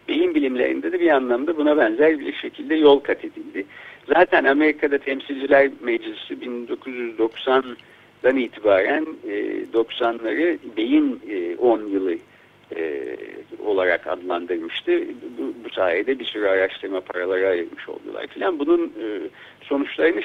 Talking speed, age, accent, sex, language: 120 wpm, 60-79, native, male, Turkish